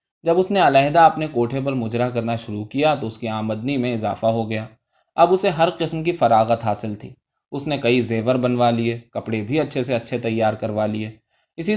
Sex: male